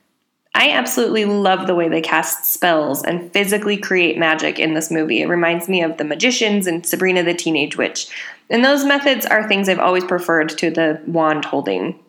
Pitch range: 170-220 Hz